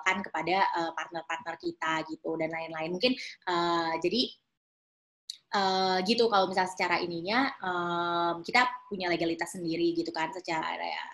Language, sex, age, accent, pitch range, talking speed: Indonesian, female, 20-39, native, 170-215 Hz, 125 wpm